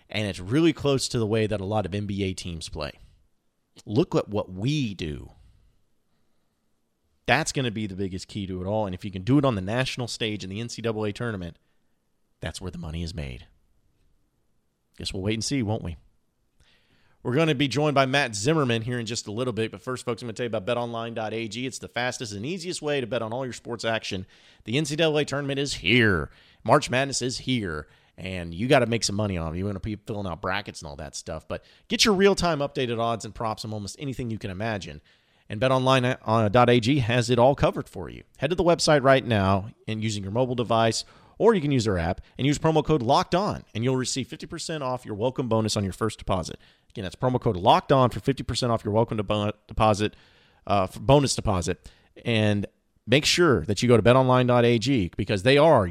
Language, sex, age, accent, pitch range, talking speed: English, male, 30-49, American, 100-130 Hz, 225 wpm